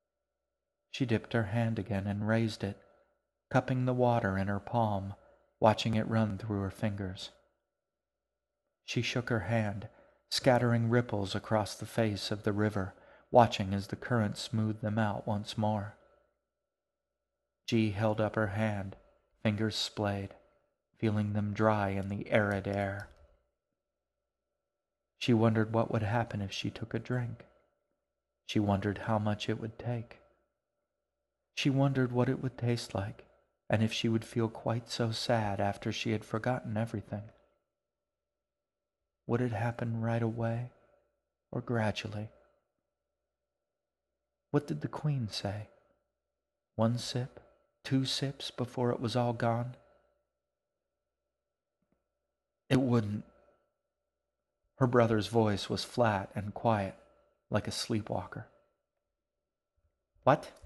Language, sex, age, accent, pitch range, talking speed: English, male, 40-59, American, 105-120 Hz, 125 wpm